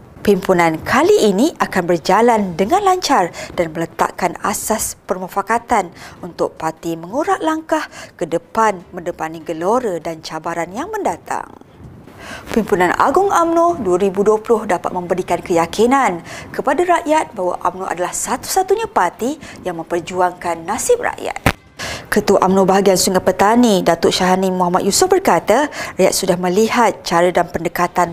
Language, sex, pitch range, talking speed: Malay, female, 175-235 Hz, 120 wpm